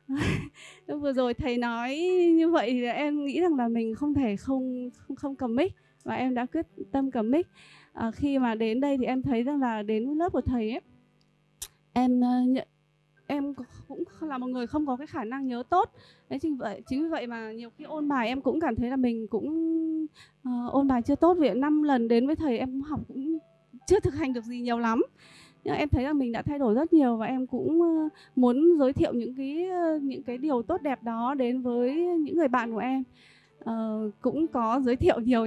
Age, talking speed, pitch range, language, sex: 20-39, 220 wpm, 235-295 Hz, Vietnamese, female